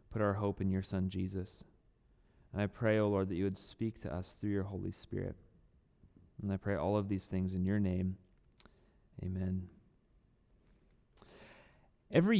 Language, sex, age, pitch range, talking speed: English, male, 30-49, 105-140 Hz, 165 wpm